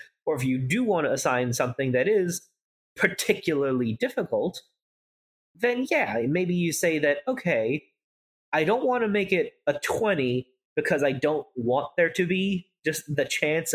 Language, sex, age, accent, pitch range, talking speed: English, male, 30-49, American, 130-205 Hz, 160 wpm